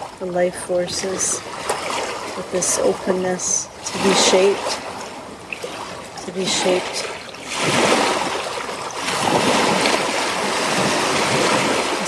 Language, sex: English, female